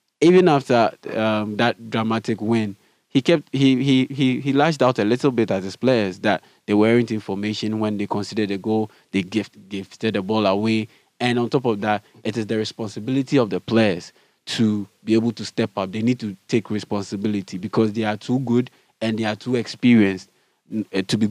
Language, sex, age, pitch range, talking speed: English, male, 20-39, 105-120 Hz, 195 wpm